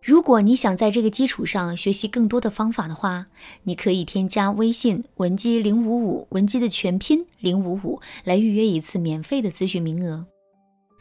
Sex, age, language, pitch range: female, 20-39, Chinese, 190-255 Hz